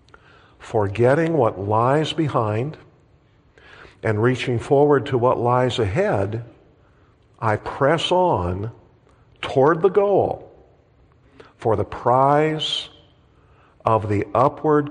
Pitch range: 110-135 Hz